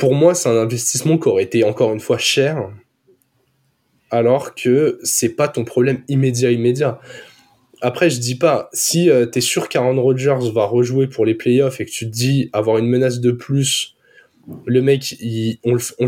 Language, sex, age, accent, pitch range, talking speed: French, male, 20-39, French, 115-140 Hz, 190 wpm